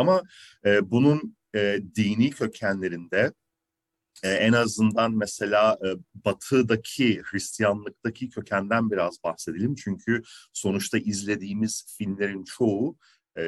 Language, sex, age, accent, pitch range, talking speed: Turkish, male, 40-59, native, 105-135 Hz, 100 wpm